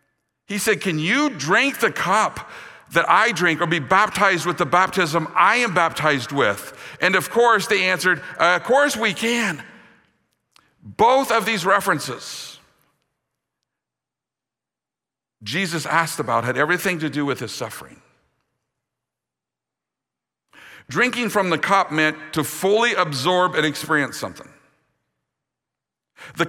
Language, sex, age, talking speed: English, male, 50-69, 125 wpm